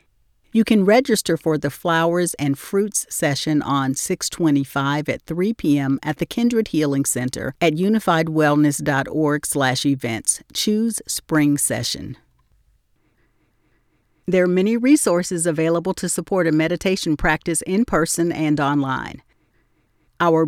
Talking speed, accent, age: 120 wpm, American, 50-69